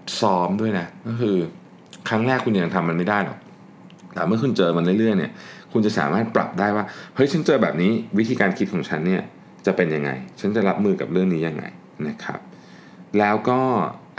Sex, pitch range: male, 90-115 Hz